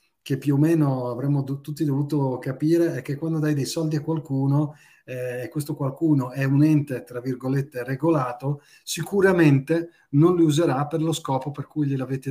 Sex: male